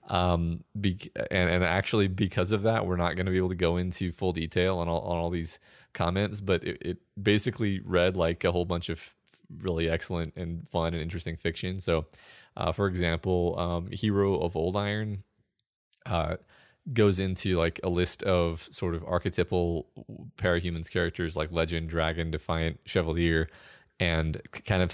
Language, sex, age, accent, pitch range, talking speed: English, male, 20-39, American, 80-95 Hz, 175 wpm